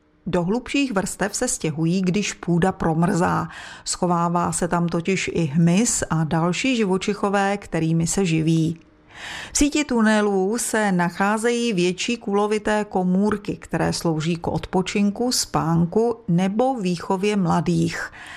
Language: Czech